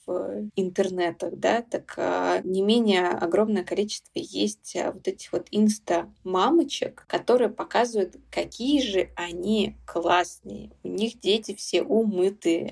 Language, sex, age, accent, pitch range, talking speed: Russian, female, 20-39, native, 180-220 Hz, 120 wpm